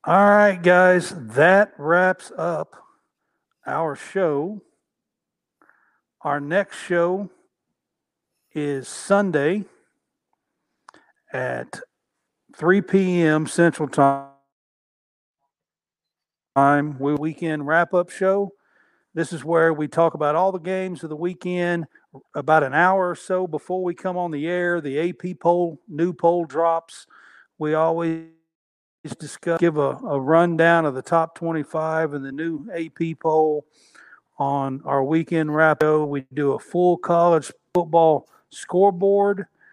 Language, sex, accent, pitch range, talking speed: English, male, American, 150-180 Hz, 120 wpm